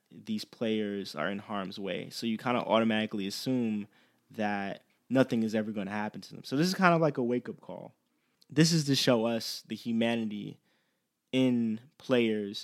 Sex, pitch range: male, 105-125 Hz